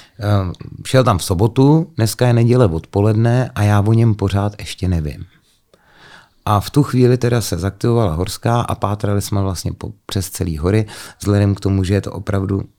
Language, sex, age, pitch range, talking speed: Czech, male, 30-49, 95-120 Hz, 175 wpm